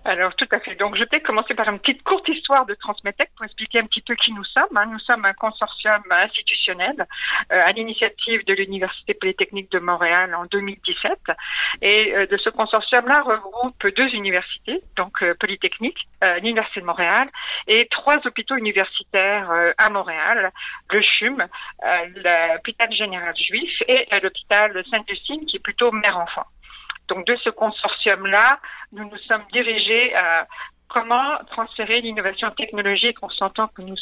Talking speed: 160 wpm